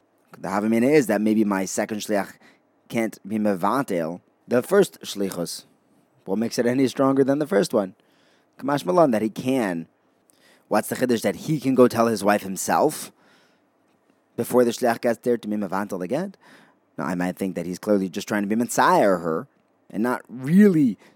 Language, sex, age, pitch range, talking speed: English, male, 30-49, 105-135 Hz, 180 wpm